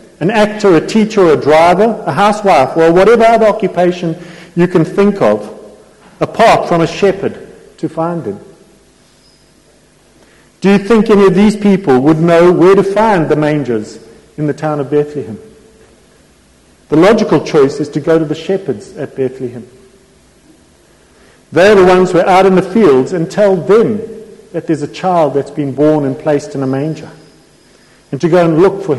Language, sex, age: English, male, 50-69